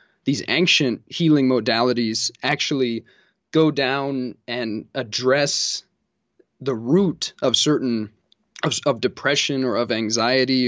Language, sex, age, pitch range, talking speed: English, male, 20-39, 125-150 Hz, 105 wpm